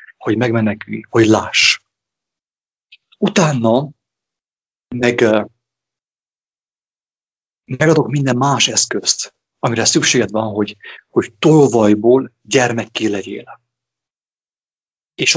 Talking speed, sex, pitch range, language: 75 wpm, male, 115-150 Hz, English